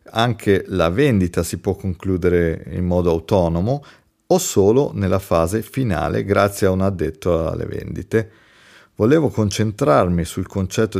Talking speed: 130 wpm